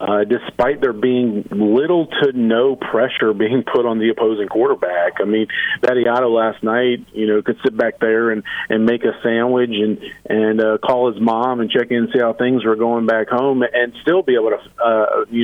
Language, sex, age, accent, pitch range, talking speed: English, male, 40-59, American, 110-125 Hz, 215 wpm